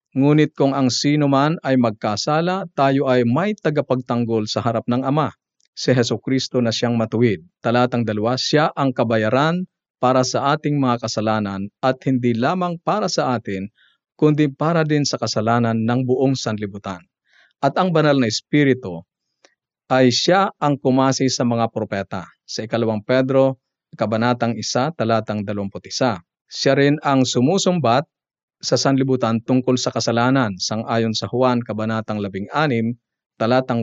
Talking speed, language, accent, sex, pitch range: 145 wpm, Filipino, native, male, 110-140 Hz